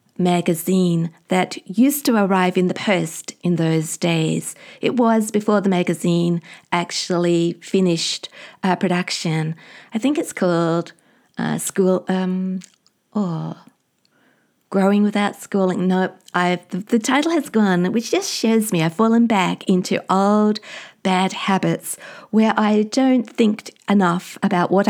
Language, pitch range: English, 175-220 Hz